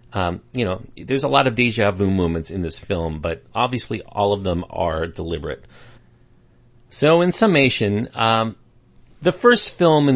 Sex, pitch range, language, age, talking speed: male, 95-130 Hz, English, 40-59, 165 wpm